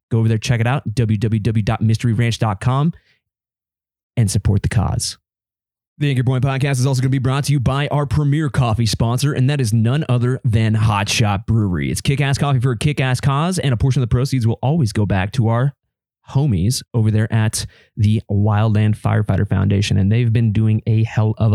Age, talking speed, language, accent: 20-39, 200 wpm, English, American